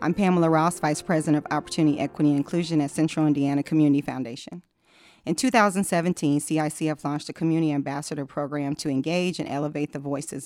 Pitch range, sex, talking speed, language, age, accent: 145-170 Hz, female, 165 wpm, English, 40-59, American